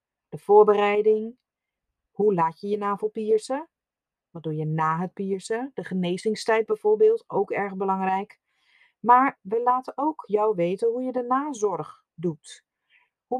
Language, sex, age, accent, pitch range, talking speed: Dutch, female, 40-59, Dutch, 165-245 Hz, 145 wpm